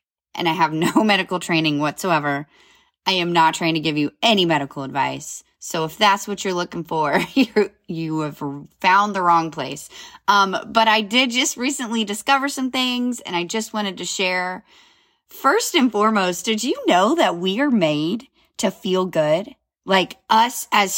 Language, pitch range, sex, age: English, 160-220 Hz, female, 20-39